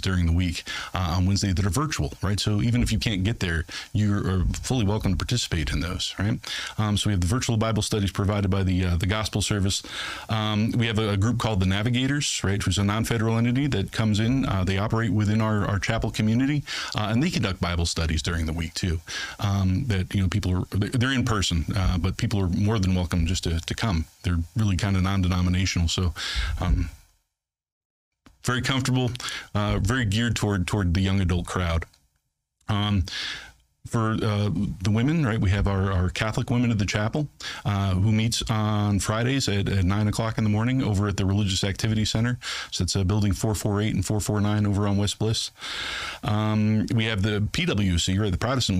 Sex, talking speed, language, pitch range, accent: male, 205 wpm, English, 90-110 Hz, American